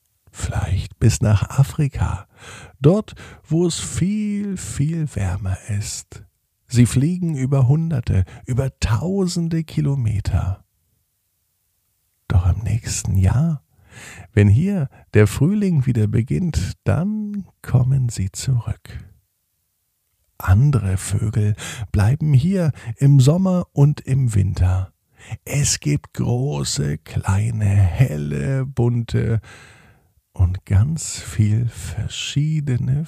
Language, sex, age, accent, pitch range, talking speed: German, male, 50-69, German, 100-135 Hz, 95 wpm